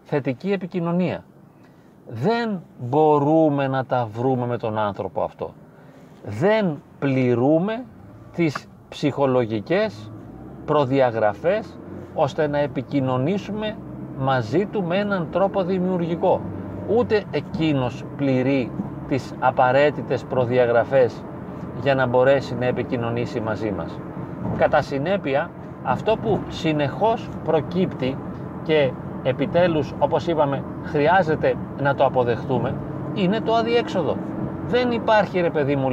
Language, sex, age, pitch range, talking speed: Greek, male, 40-59, 130-180 Hz, 100 wpm